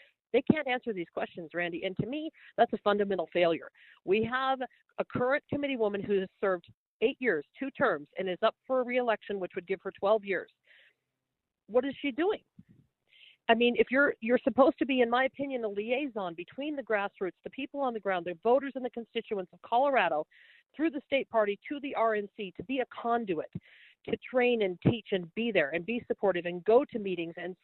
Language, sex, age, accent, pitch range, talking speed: English, female, 50-69, American, 175-230 Hz, 210 wpm